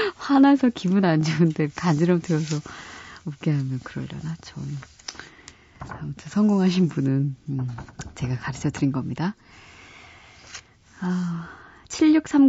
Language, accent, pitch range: Korean, native, 145-205 Hz